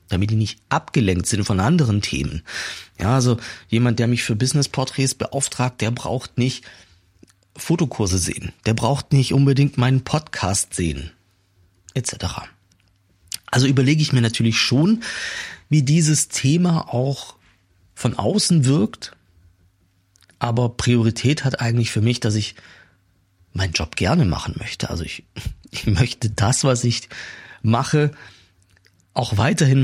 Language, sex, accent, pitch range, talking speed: German, male, German, 95-135 Hz, 130 wpm